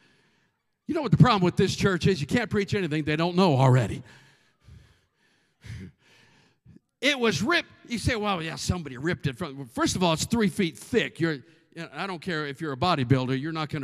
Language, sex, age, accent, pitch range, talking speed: English, male, 50-69, American, 135-195 Hz, 205 wpm